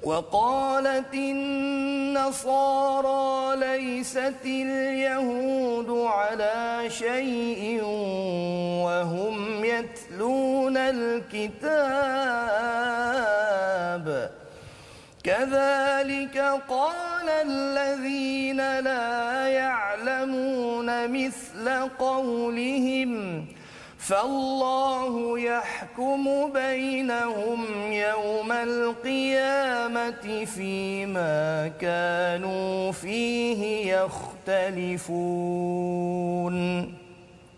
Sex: male